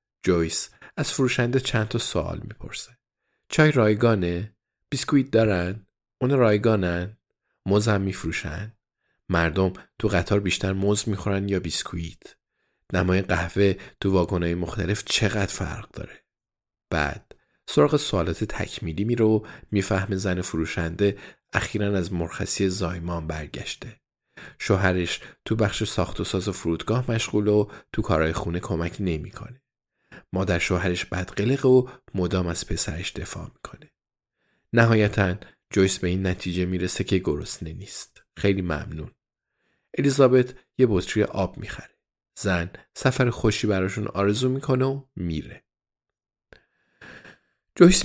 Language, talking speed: Persian, 120 wpm